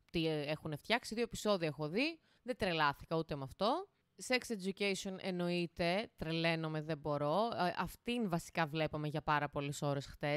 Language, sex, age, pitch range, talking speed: Greek, female, 20-39, 165-225 Hz, 155 wpm